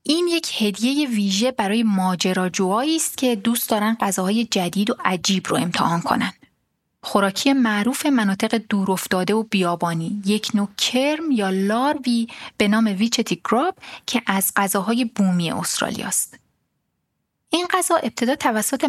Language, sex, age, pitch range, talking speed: Persian, female, 30-49, 195-255 Hz, 130 wpm